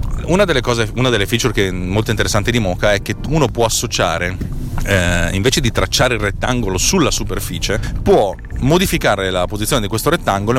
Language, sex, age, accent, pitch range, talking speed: Italian, male, 40-59, native, 95-125 Hz, 180 wpm